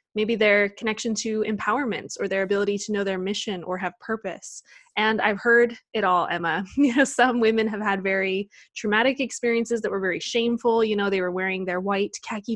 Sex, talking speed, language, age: female, 200 wpm, English, 20-39